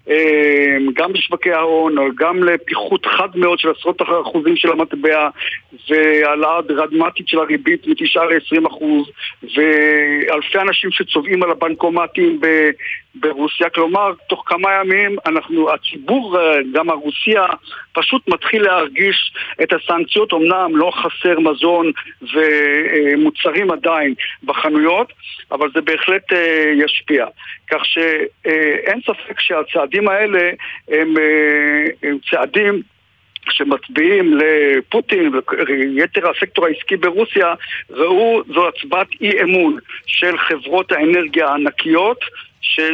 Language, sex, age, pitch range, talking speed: Hebrew, male, 50-69, 155-195 Hz, 100 wpm